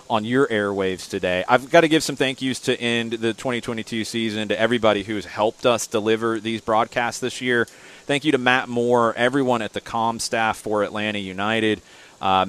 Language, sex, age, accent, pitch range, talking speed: English, male, 30-49, American, 95-115 Hz, 195 wpm